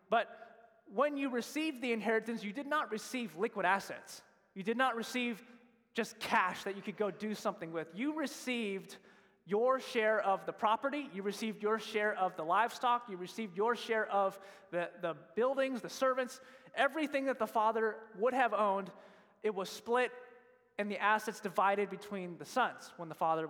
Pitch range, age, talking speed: 200-250 Hz, 20-39, 175 wpm